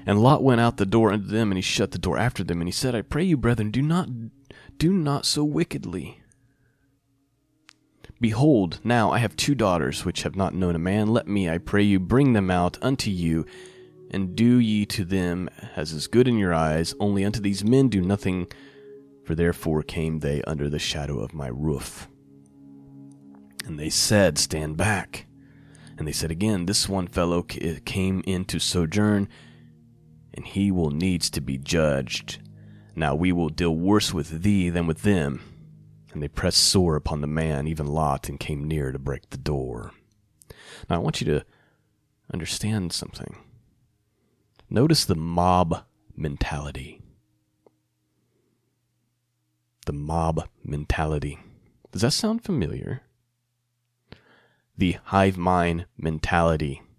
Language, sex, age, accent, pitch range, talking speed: English, male, 30-49, American, 80-120 Hz, 155 wpm